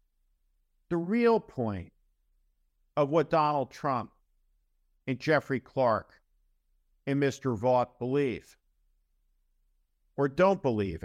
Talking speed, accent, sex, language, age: 90 wpm, American, male, English, 50-69